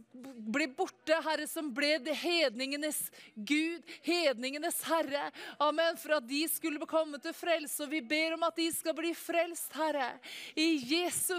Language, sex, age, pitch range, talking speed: English, female, 20-39, 325-365 Hz, 150 wpm